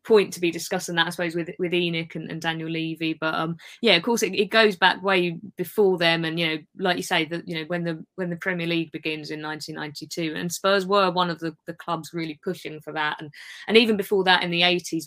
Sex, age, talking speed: female, 20-39, 255 wpm